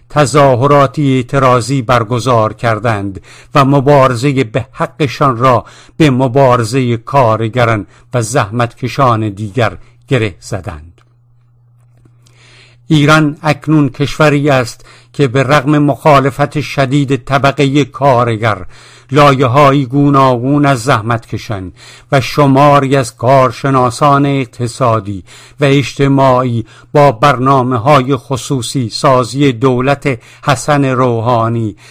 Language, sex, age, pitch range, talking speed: English, male, 60-79, 120-140 Hz, 90 wpm